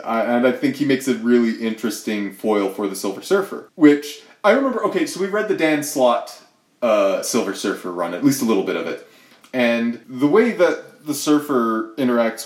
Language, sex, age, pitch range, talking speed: English, male, 30-49, 105-140 Hz, 200 wpm